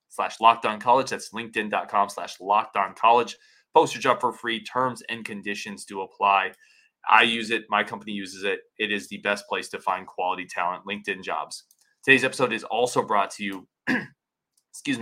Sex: male